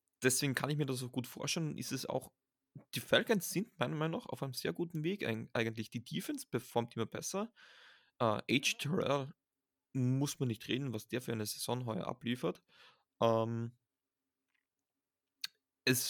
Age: 20-39